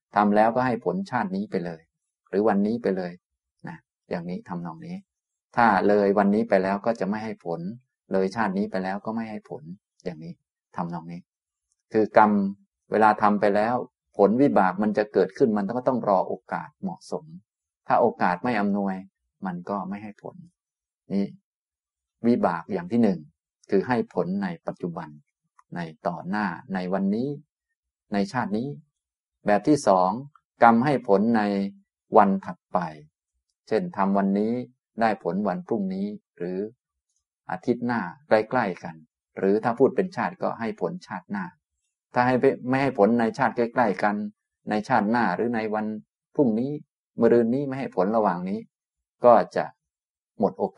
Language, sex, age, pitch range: Thai, male, 20-39, 95-135 Hz